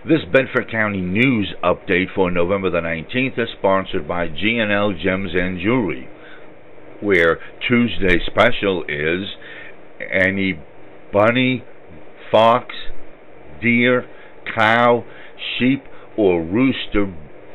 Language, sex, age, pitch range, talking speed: English, male, 60-79, 90-105 Hz, 95 wpm